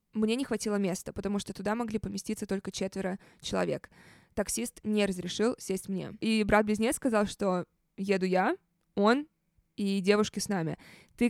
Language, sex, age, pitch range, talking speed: Russian, female, 20-39, 195-250 Hz, 155 wpm